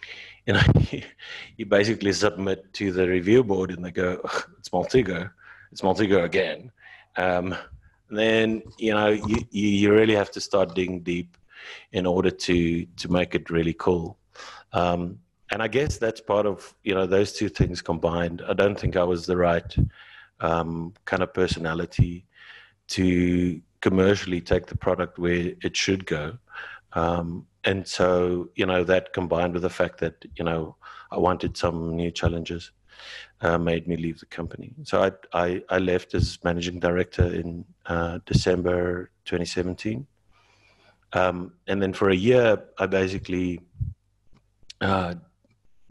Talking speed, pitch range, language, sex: 150 wpm, 85-100 Hz, English, male